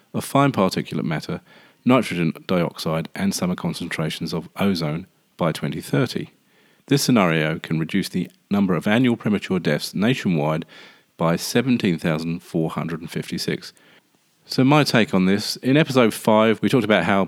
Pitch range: 85-110 Hz